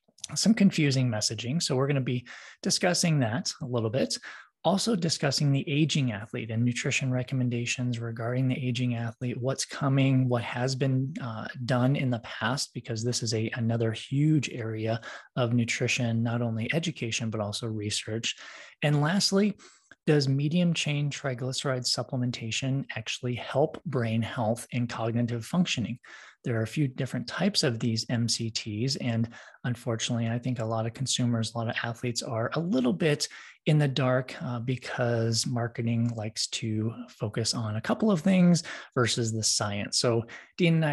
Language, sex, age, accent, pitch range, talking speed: English, male, 20-39, American, 115-145 Hz, 160 wpm